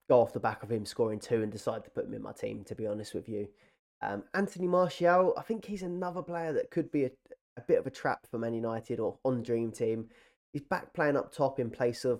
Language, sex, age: English, male, 20-39